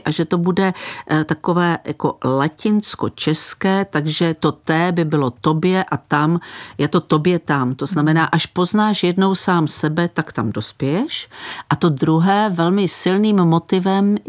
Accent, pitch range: native, 155-175 Hz